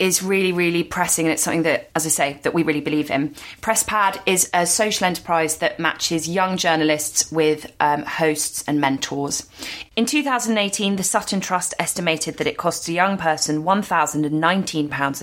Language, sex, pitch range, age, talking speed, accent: English, female, 145-170 Hz, 20-39, 170 wpm, British